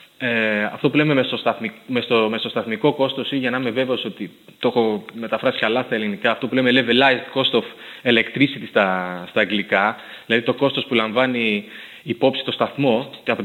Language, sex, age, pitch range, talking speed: Greek, male, 20-39, 115-140 Hz, 175 wpm